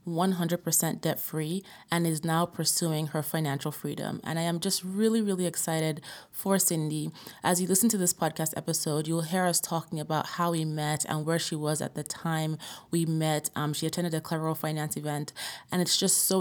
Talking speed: 190 wpm